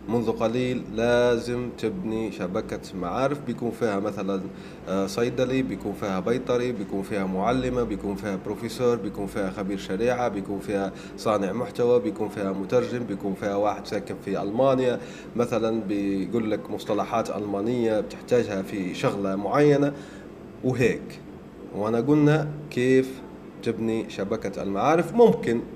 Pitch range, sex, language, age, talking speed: 110-145 Hz, male, Arabic, 30-49, 125 wpm